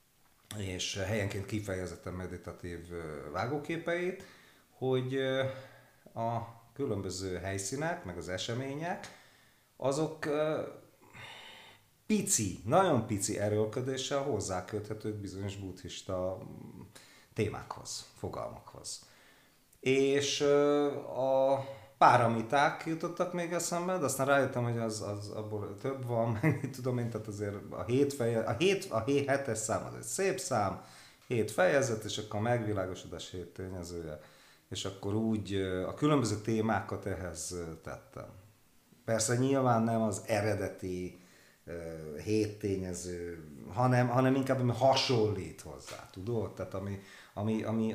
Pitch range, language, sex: 95-135 Hz, Hungarian, male